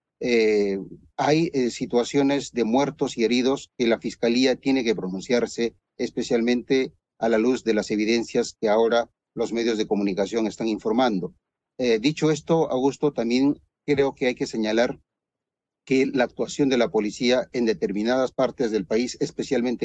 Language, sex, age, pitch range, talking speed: Spanish, male, 40-59, 115-140 Hz, 155 wpm